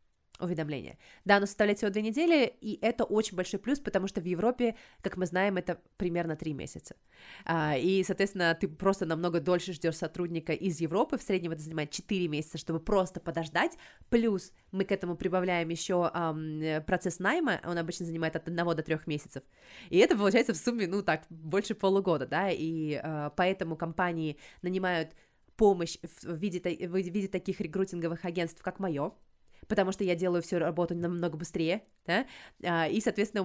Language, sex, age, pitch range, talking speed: Russian, female, 20-39, 170-200 Hz, 165 wpm